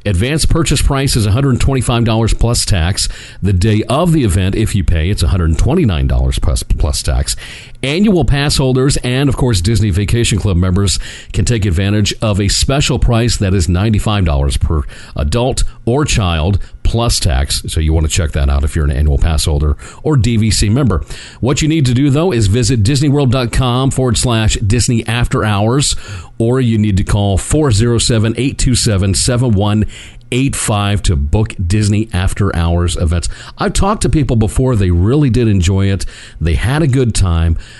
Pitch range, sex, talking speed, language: 90-120 Hz, male, 165 wpm, English